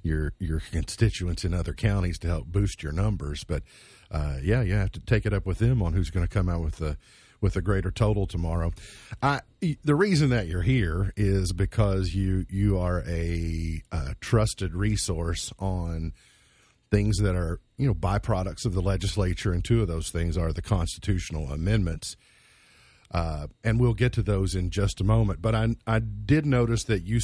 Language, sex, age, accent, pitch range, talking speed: English, male, 50-69, American, 90-125 Hz, 190 wpm